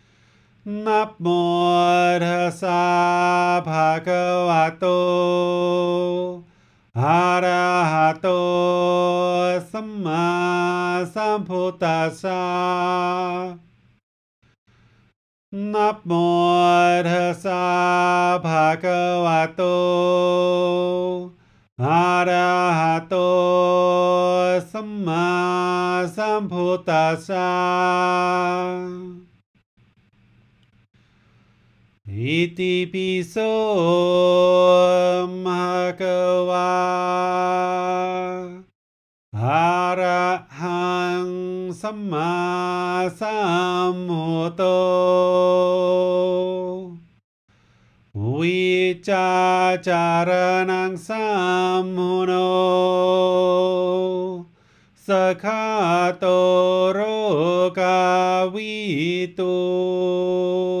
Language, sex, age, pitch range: English, male, 40-59, 175-180 Hz